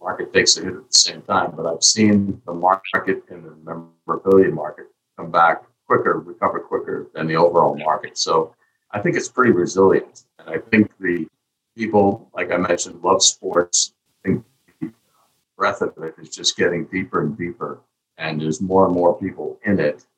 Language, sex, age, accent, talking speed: English, male, 50-69, American, 185 wpm